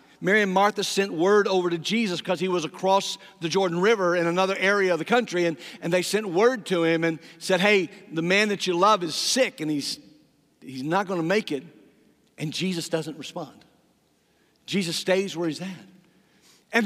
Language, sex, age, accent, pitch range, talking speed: English, male, 50-69, American, 155-225 Hz, 200 wpm